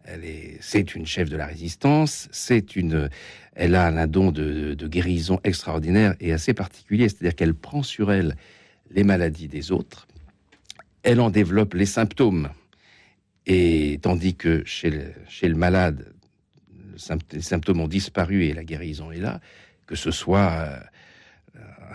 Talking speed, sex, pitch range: 160 wpm, male, 80-100 Hz